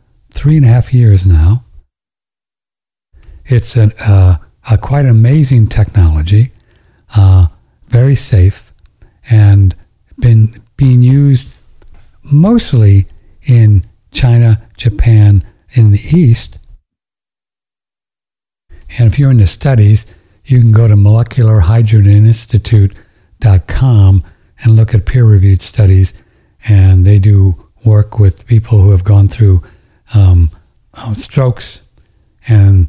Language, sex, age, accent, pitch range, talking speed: English, male, 60-79, American, 95-115 Hz, 100 wpm